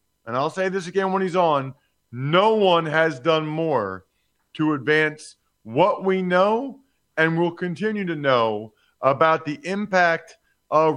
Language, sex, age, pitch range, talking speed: English, male, 40-59, 135-175 Hz, 150 wpm